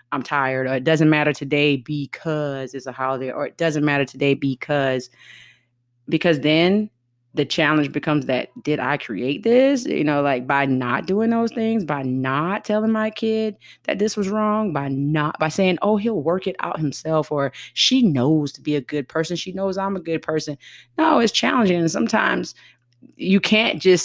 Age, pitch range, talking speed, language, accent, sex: 30-49, 140-175 Hz, 190 wpm, English, American, female